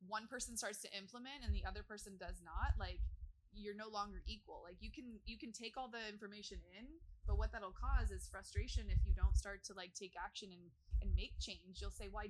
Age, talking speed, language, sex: 20-39, 235 wpm, English, female